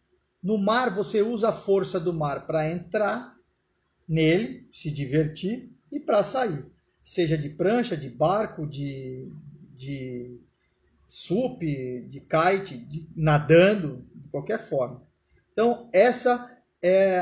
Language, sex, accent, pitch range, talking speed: Portuguese, male, Brazilian, 155-195 Hz, 120 wpm